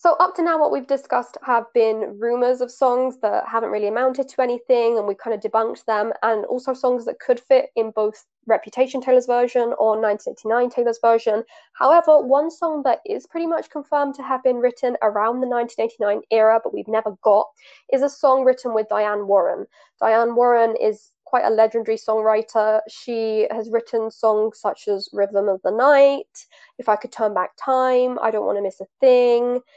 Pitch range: 220-260 Hz